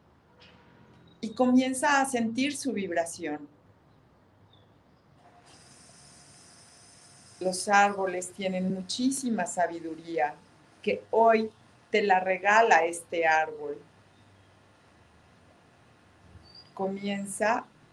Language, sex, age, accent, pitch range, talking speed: Spanish, female, 40-59, Mexican, 170-225 Hz, 65 wpm